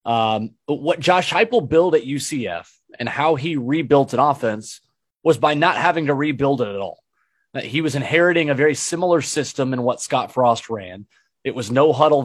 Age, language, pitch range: 30-49, English, 125-165 Hz